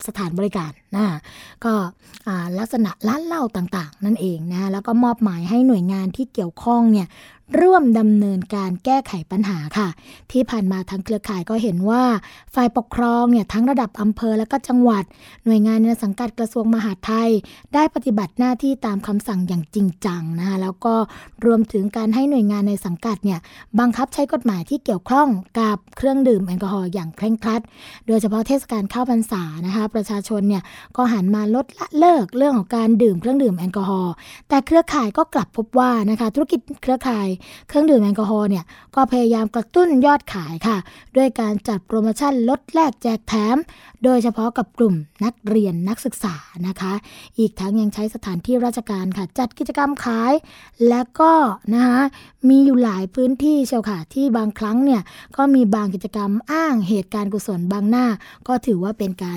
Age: 20-39